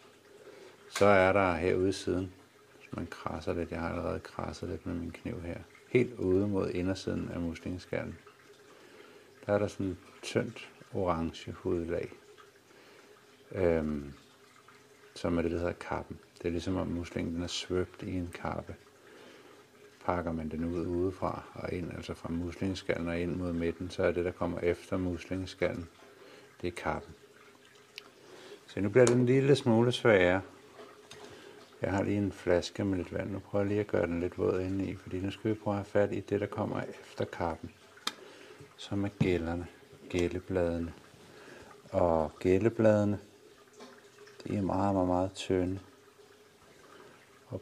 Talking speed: 160 wpm